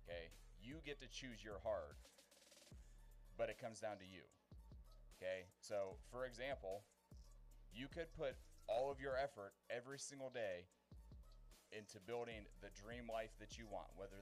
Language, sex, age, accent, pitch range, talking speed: English, male, 30-49, American, 105-135 Hz, 150 wpm